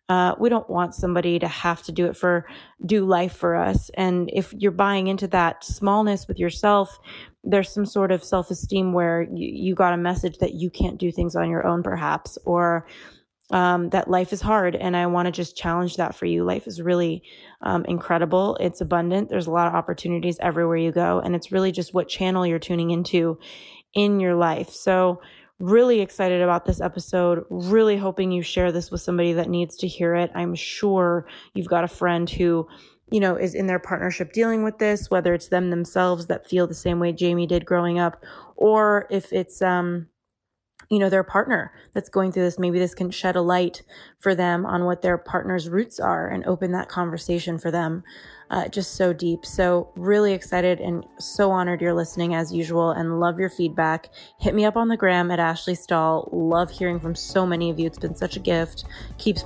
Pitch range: 170-185 Hz